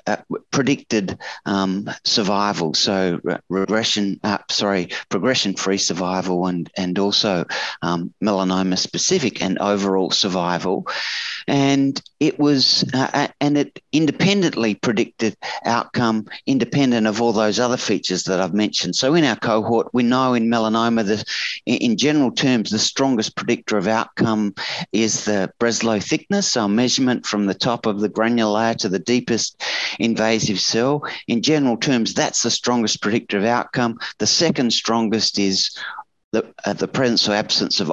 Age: 40-59